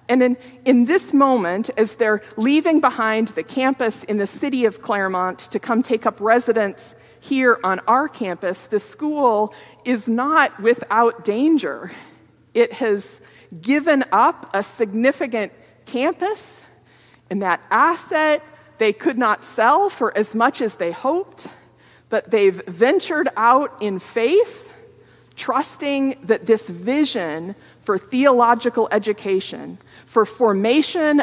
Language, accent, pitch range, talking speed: English, American, 185-260 Hz, 125 wpm